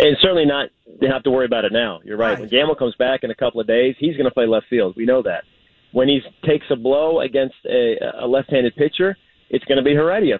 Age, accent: 30-49, American